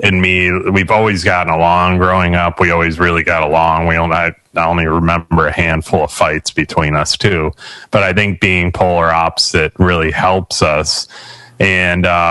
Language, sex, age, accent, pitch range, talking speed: English, male, 30-49, American, 85-95 Hz, 170 wpm